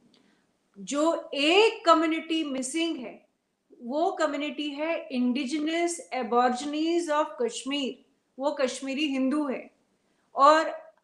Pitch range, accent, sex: 245-300 Hz, Indian, female